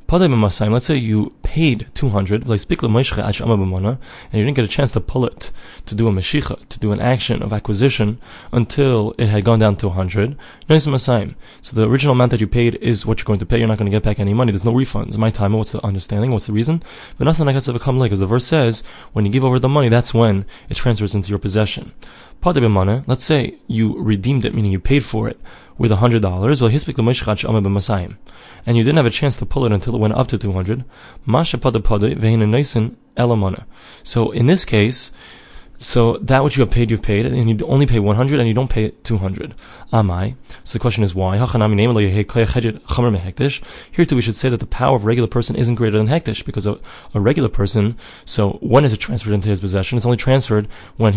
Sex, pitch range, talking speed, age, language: male, 105-125 Hz, 205 wpm, 20-39, English